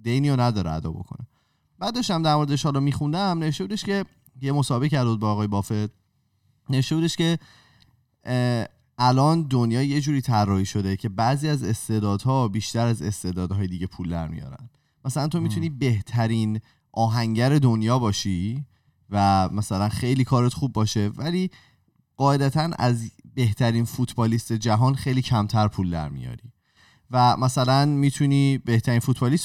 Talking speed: 135 wpm